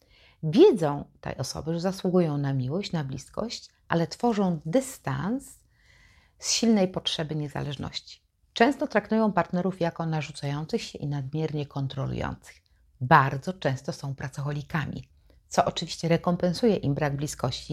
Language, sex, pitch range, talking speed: Polish, female, 130-175 Hz, 120 wpm